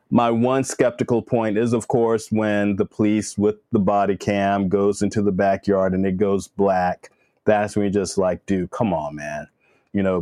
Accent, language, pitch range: American, English, 95-115 Hz